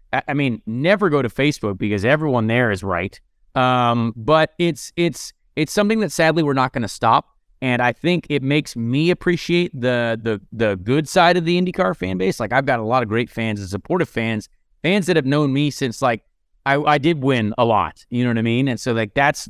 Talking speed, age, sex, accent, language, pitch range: 230 wpm, 30-49, male, American, English, 125-175 Hz